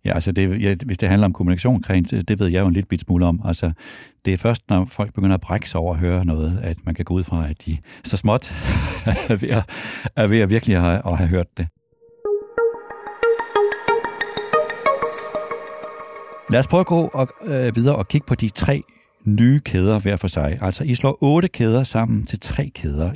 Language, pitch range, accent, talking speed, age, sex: Danish, 95-130 Hz, native, 200 wpm, 60-79, male